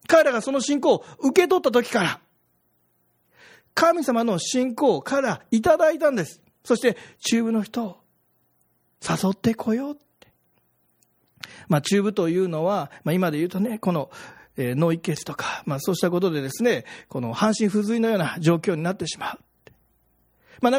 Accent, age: native, 40-59